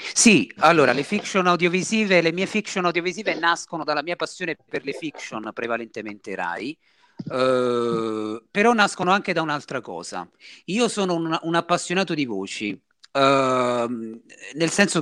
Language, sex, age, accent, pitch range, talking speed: Italian, male, 40-59, native, 125-175 Hz, 140 wpm